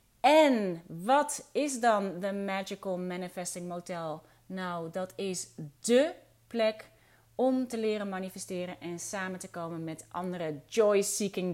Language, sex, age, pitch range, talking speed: Dutch, female, 30-49, 165-205 Hz, 125 wpm